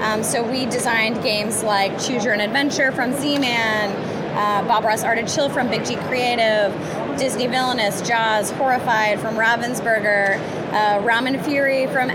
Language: English